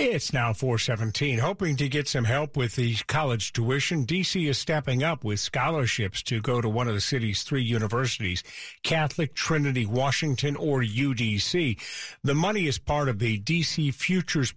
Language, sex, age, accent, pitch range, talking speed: English, male, 50-69, American, 115-145 Hz, 165 wpm